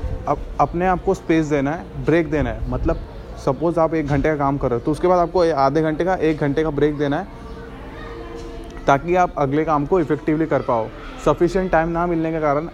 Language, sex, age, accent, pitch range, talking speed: Hindi, male, 20-39, native, 140-160 Hz, 215 wpm